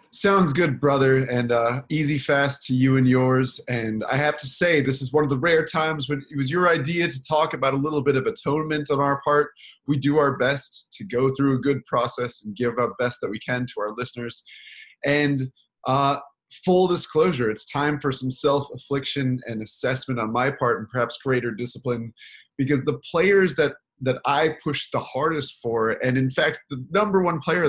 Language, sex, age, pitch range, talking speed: English, male, 20-39, 125-150 Hz, 205 wpm